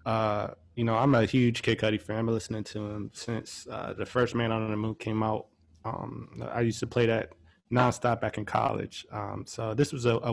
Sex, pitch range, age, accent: male, 110-125 Hz, 20-39, American